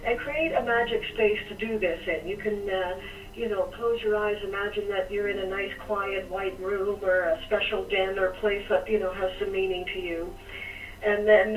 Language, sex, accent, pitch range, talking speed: English, female, American, 185-215 Hz, 220 wpm